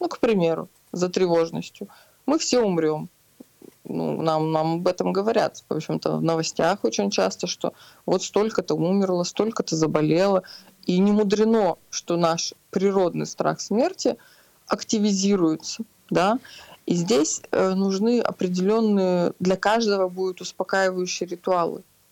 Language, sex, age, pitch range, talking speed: Russian, female, 20-39, 165-210 Hz, 120 wpm